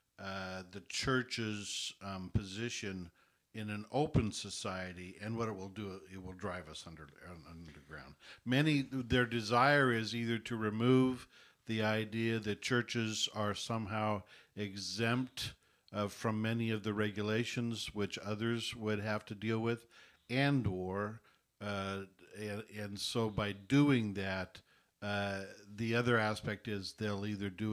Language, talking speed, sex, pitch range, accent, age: English, 140 wpm, male, 100-120 Hz, American, 60-79